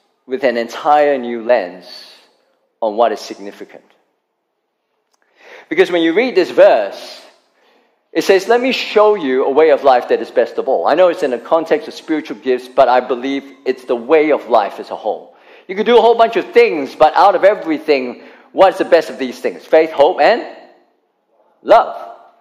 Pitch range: 170-275 Hz